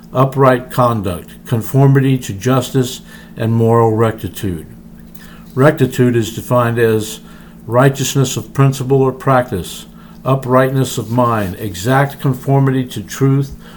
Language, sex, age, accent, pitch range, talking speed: English, male, 60-79, American, 115-135 Hz, 105 wpm